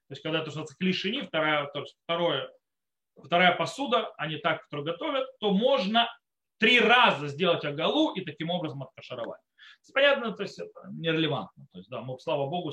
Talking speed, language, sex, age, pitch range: 135 wpm, Russian, male, 30-49, 160-230 Hz